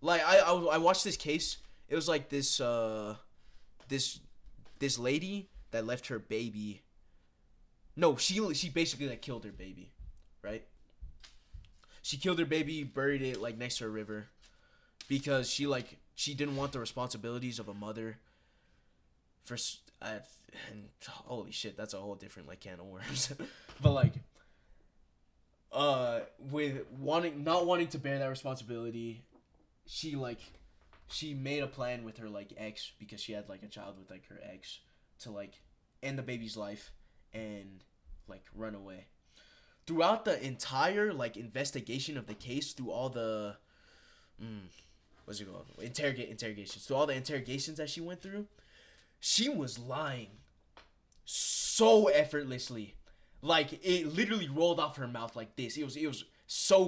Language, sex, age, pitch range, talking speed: English, male, 20-39, 105-150 Hz, 155 wpm